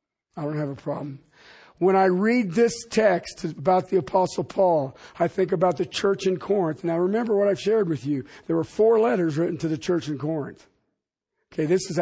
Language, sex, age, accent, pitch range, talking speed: English, male, 50-69, American, 160-200 Hz, 205 wpm